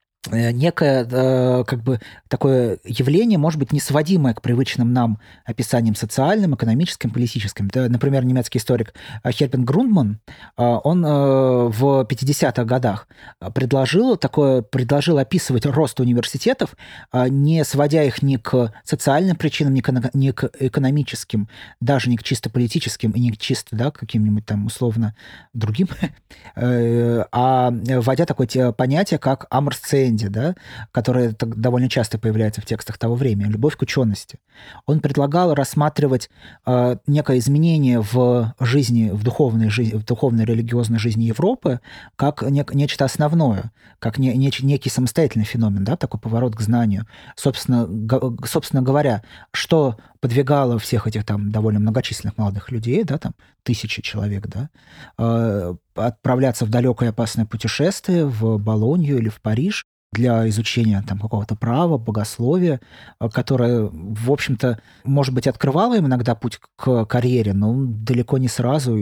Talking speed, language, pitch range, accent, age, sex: 135 wpm, Russian, 115-140 Hz, native, 20-39, male